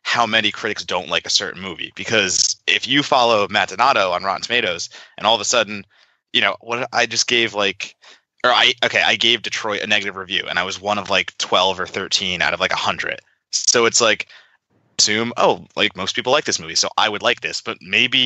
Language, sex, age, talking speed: English, male, 20-39, 230 wpm